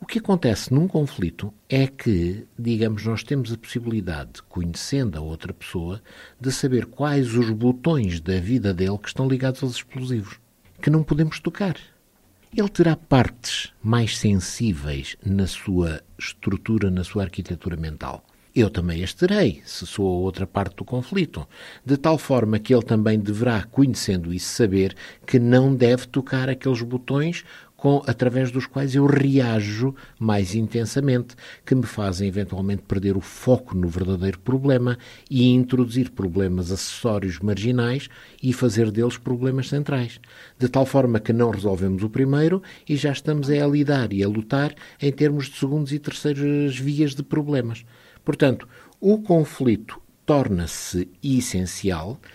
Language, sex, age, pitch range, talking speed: Portuguese, male, 50-69, 100-135 Hz, 150 wpm